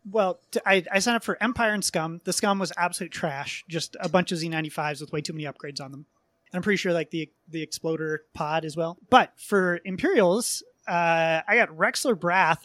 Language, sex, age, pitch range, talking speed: English, male, 30-49, 165-200 Hz, 215 wpm